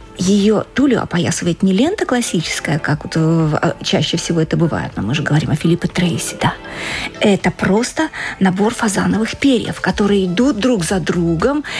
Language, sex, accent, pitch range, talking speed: Russian, female, native, 180-245 Hz, 160 wpm